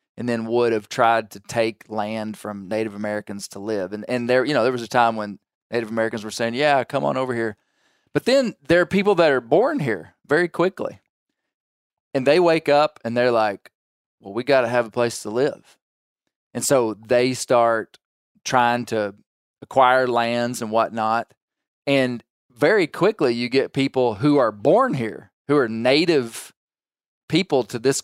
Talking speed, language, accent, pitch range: 180 wpm, English, American, 110-130 Hz